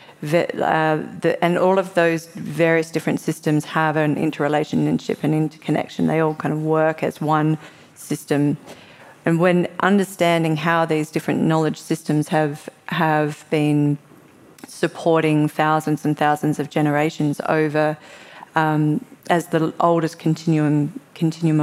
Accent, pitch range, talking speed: Australian, 150-165 Hz, 130 wpm